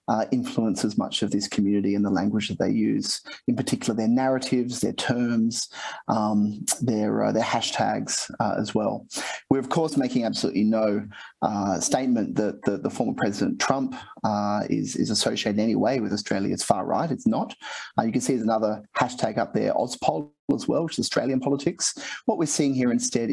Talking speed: 195 wpm